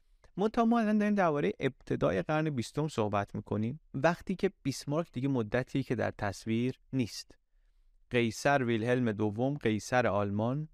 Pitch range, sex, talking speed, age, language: 110-145 Hz, male, 125 wpm, 30-49, Persian